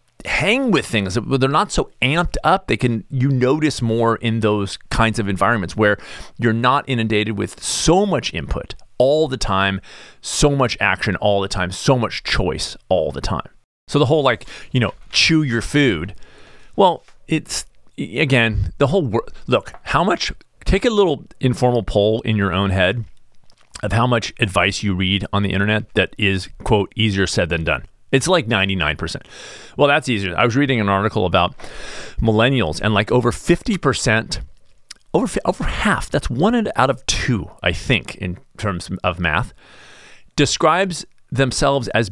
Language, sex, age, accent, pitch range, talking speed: English, male, 40-59, American, 100-135 Hz, 170 wpm